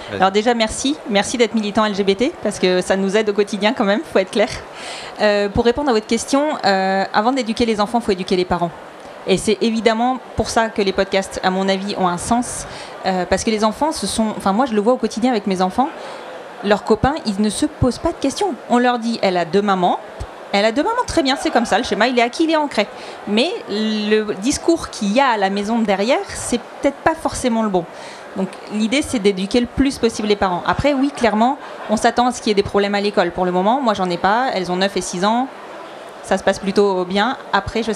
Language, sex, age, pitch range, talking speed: French, female, 30-49, 200-245 Hz, 255 wpm